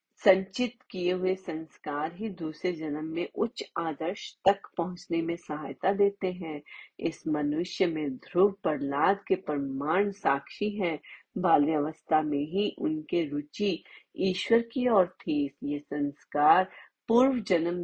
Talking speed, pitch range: 130 wpm, 155-205 Hz